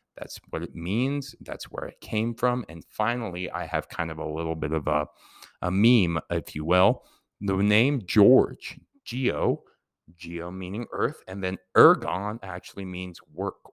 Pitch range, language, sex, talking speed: 85-100 Hz, English, male, 165 wpm